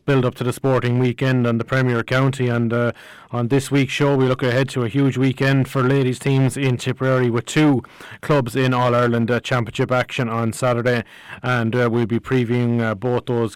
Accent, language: Irish, English